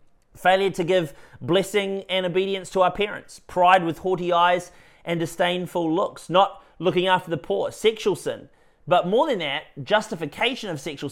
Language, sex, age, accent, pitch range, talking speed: English, male, 30-49, Australian, 145-195 Hz, 160 wpm